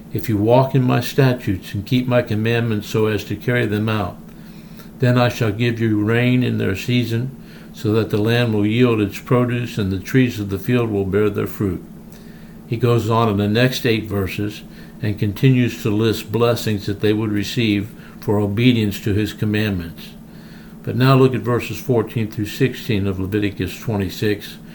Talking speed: 185 wpm